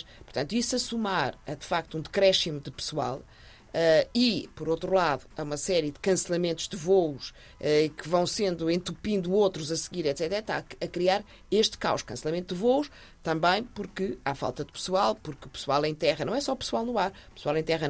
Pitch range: 145-185 Hz